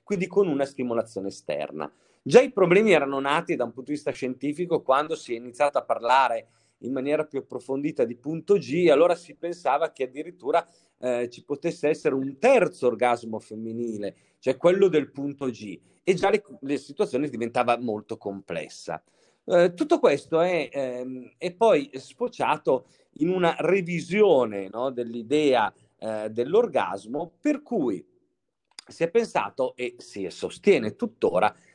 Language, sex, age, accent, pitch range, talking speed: Italian, male, 40-59, native, 125-190 Hz, 150 wpm